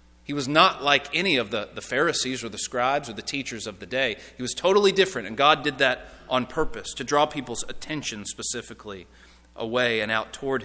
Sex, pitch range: male, 125-175 Hz